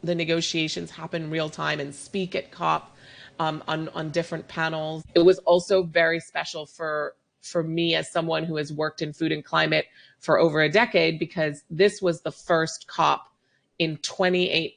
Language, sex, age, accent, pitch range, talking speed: English, female, 30-49, American, 145-170 Hz, 175 wpm